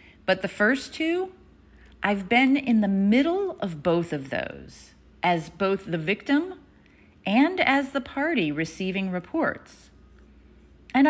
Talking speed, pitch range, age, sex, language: 130 wpm, 150-230 Hz, 40-59, female, English